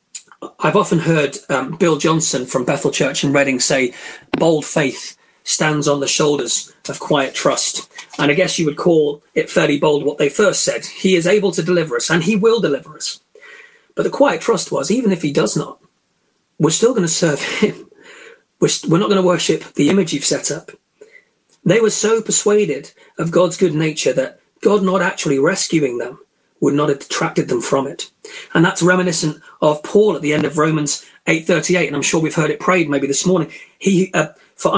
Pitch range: 155-215 Hz